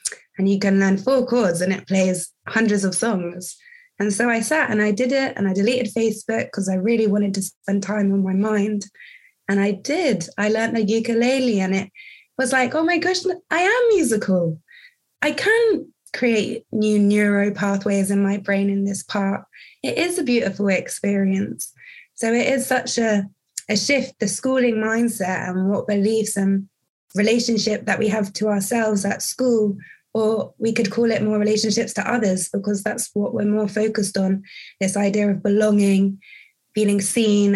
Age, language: 20-39, English